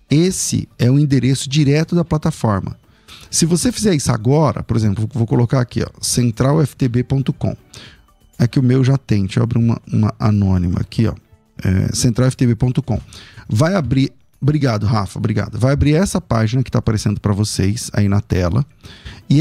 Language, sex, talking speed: Portuguese, male, 165 wpm